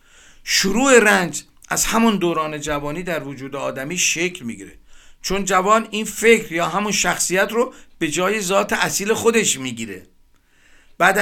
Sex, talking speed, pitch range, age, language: male, 140 wpm, 155-210 Hz, 50-69, Persian